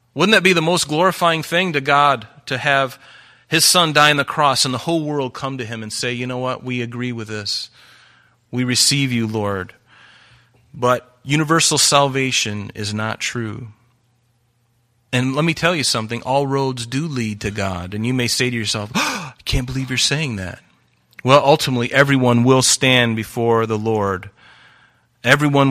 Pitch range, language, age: 120-145 Hz, English, 30-49